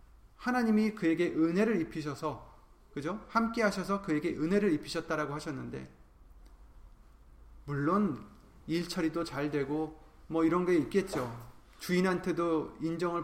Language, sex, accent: Korean, male, native